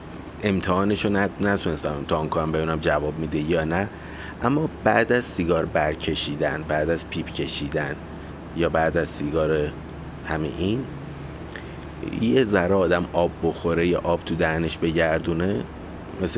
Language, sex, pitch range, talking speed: Persian, male, 80-95 Hz, 130 wpm